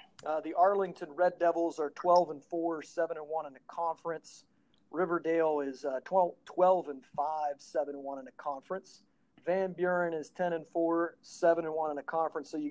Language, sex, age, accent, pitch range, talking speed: English, male, 40-59, American, 150-185 Hz, 200 wpm